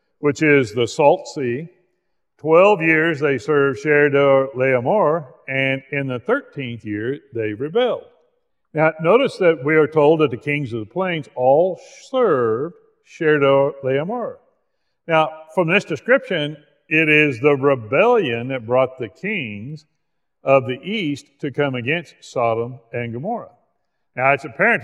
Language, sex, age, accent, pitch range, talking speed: English, male, 50-69, American, 120-165 Hz, 140 wpm